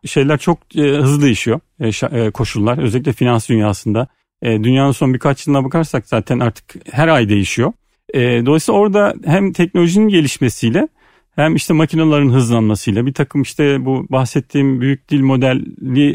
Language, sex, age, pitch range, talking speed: Turkish, male, 40-59, 125-160 Hz, 145 wpm